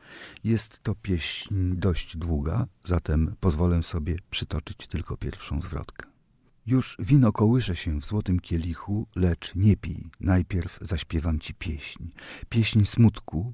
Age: 50-69